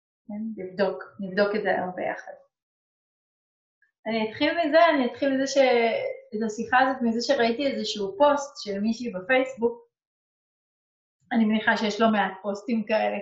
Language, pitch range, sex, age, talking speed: Hebrew, 205-255 Hz, female, 30-49, 140 wpm